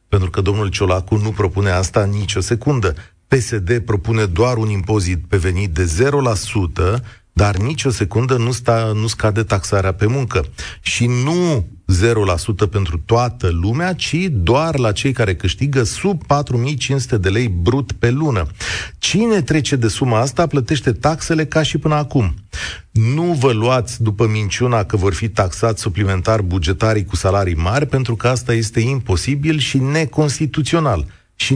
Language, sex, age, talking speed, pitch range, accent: Romanian, male, 40-59, 155 wpm, 100-140 Hz, native